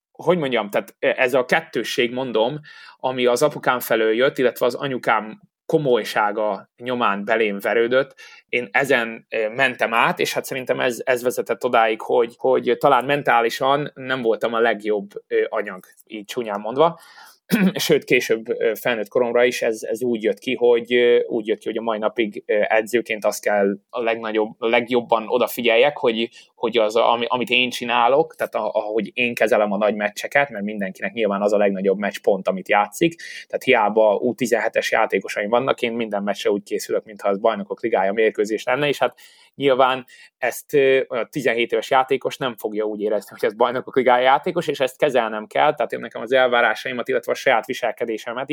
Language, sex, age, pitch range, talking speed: Hungarian, male, 20-39, 110-160 Hz, 170 wpm